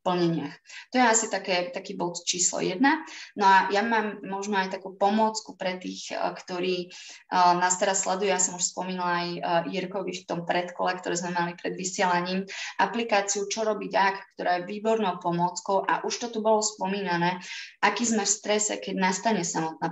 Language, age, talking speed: Slovak, 20-39, 175 wpm